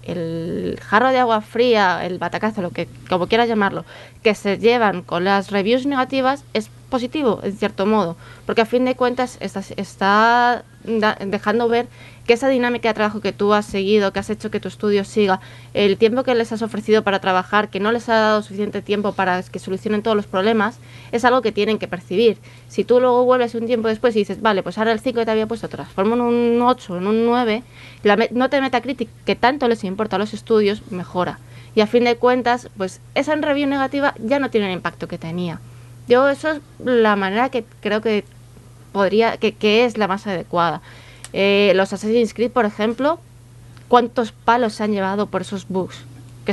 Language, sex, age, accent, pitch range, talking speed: Spanish, female, 20-39, Spanish, 190-235 Hz, 205 wpm